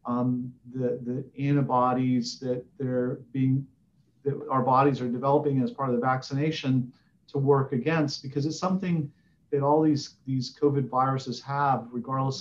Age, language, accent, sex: 50-69, English, American, male